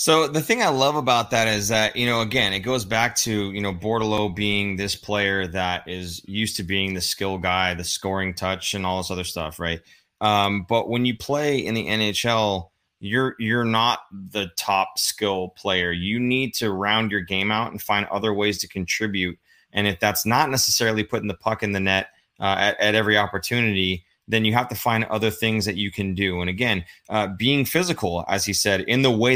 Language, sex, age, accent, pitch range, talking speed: English, male, 20-39, American, 100-120 Hz, 215 wpm